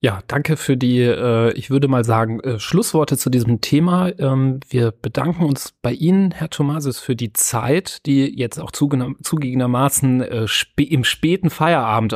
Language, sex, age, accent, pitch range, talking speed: German, male, 30-49, German, 110-130 Hz, 170 wpm